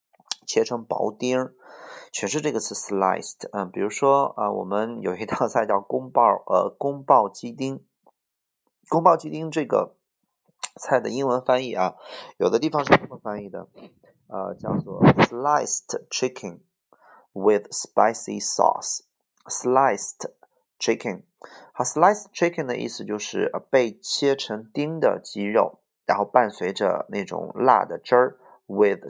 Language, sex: Chinese, male